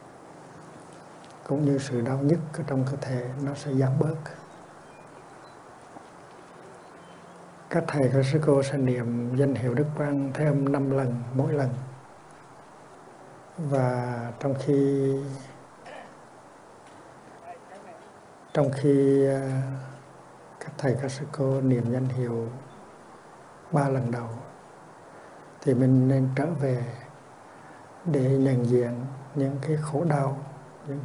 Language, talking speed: Vietnamese, 110 wpm